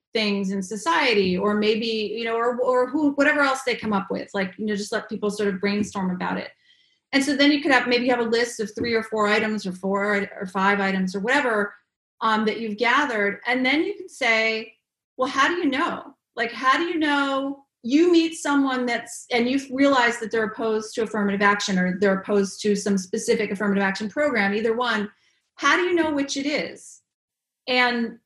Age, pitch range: 30-49, 210-275 Hz